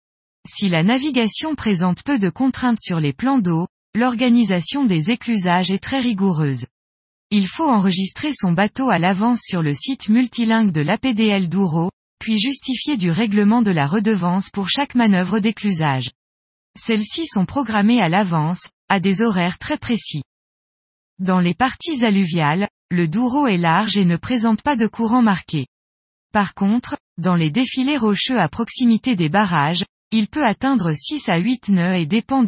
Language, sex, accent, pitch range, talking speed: French, female, French, 175-240 Hz, 160 wpm